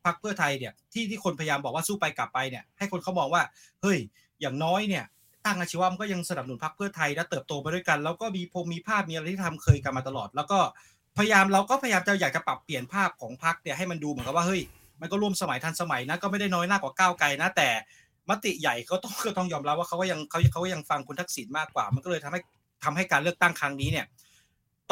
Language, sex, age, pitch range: Thai, male, 20-39, 145-195 Hz